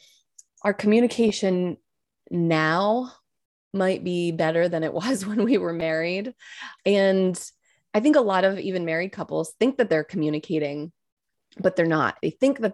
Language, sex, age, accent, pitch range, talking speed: English, female, 20-39, American, 155-205 Hz, 150 wpm